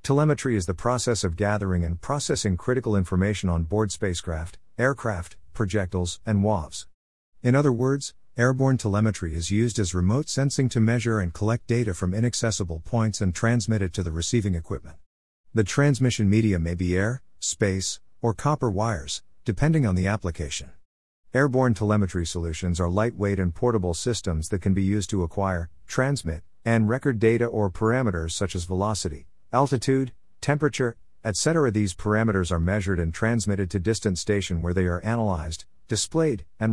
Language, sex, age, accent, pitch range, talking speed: English, male, 50-69, American, 90-115 Hz, 160 wpm